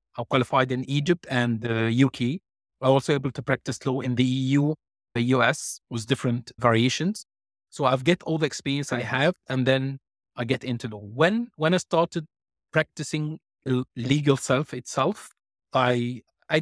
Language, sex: English, male